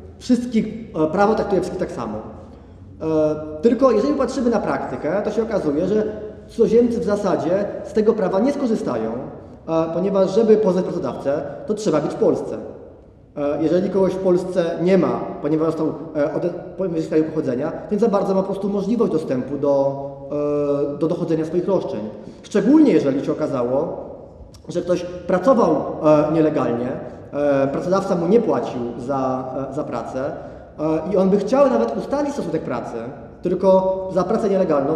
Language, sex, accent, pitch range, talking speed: Polish, male, native, 155-220 Hz, 155 wpm